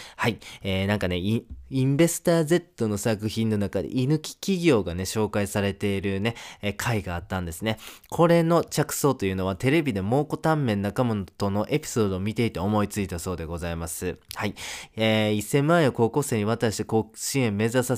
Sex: male